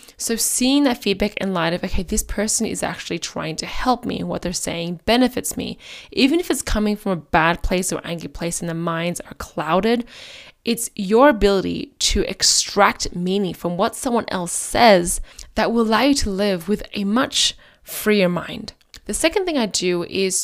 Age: 10-29